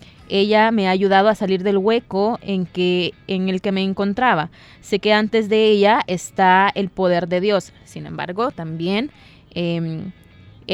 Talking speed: 155 wpm